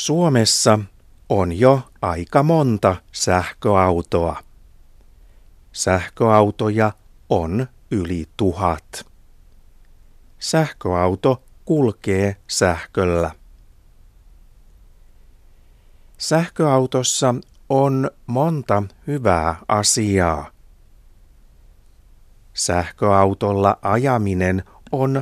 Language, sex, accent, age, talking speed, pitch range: Finnish, male, native, 60-79, 50 wpm, 85-120 Hz